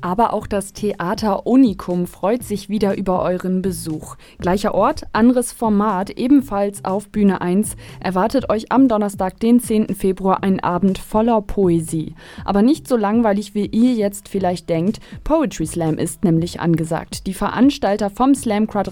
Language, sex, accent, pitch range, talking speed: German, female, German, 175-215 Hz, 150 wpm